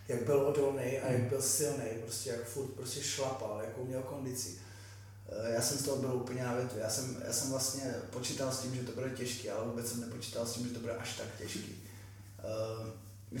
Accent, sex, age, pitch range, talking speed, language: native, male, 20-39, 110-135 Hz, 210 wpm, Czech